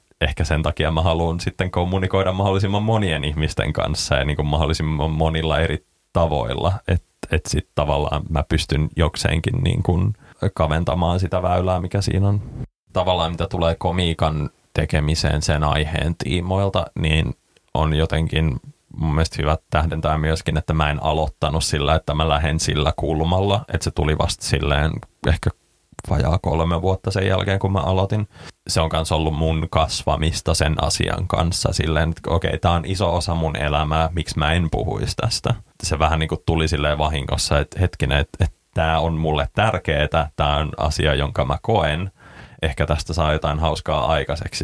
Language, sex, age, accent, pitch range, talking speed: Finnish, male, 20-39, native, 80-90 Hz, 165 wpm